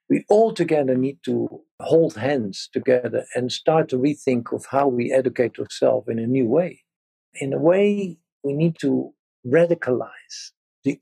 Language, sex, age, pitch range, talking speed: English, male, 50-69, 135-195 Hz, 160 wpm